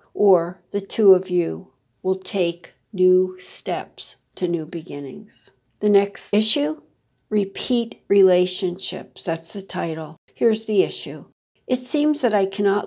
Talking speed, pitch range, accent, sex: 130 wpm, 170-210 Hz, American, female